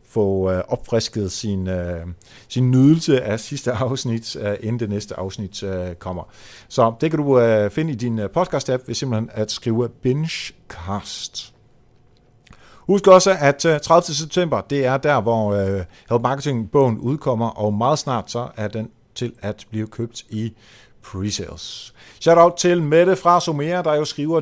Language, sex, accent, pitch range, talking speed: Danish, male, native, 105-140 Hz, 145 wpm